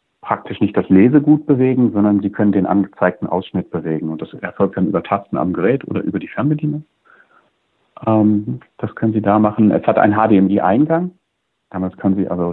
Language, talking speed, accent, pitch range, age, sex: German, 175 wpm, German, 90-110 Hz, 50-69, male